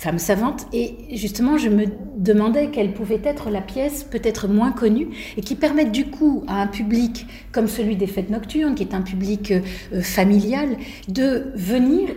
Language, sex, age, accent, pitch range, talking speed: English, female, 40-59, French, 200-250 Hz, 175 wpm